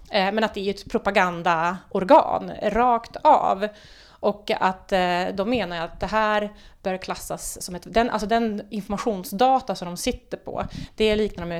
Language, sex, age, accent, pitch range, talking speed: Swedish, female, 30-49, native, 175-220 Hz, 155 wpm